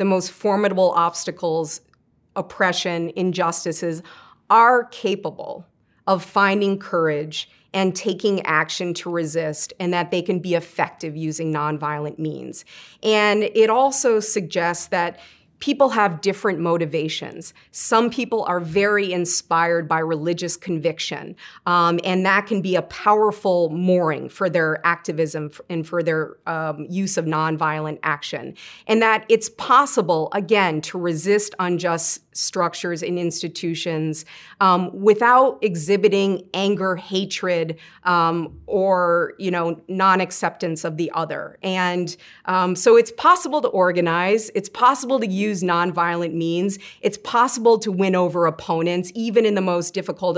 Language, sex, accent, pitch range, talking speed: English, female, American, 170-205 Hz, 130 wpm